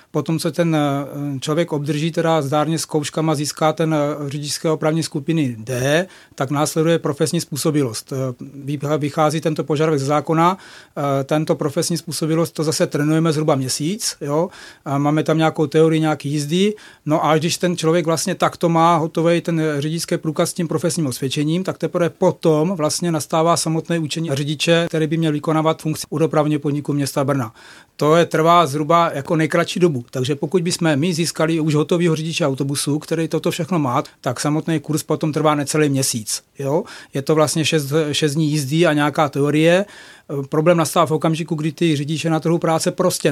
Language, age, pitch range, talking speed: Czech, 40-59, 150-170 Hz, 165 wpm